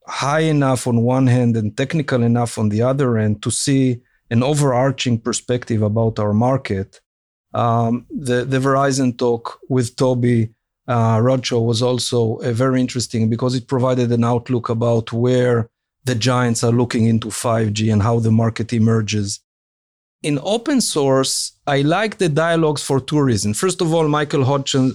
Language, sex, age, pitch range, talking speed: English, male, 50-69, 115-135 Hz, 160 wpm